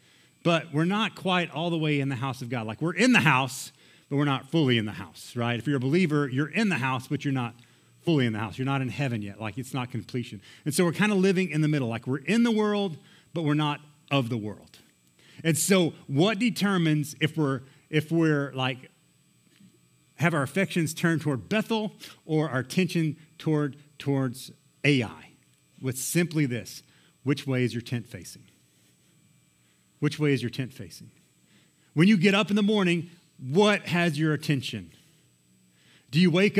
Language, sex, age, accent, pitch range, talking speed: English, male, 40-59, American, 125-175 Hz, 195 wpm